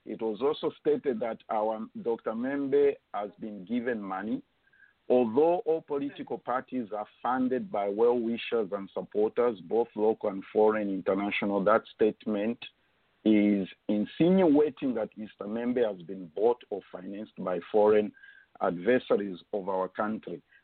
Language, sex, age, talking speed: English, male, 50-69, 130 wpm